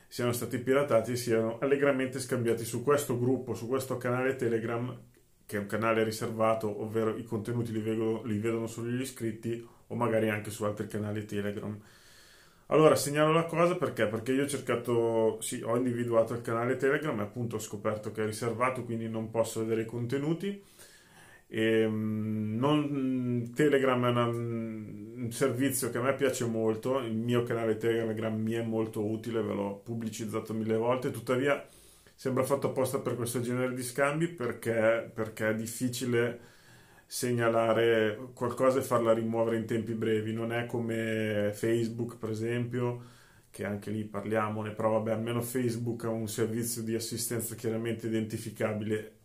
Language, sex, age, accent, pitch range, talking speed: Italian, male, 30-49, native, 110-125 Hz, 155 wpm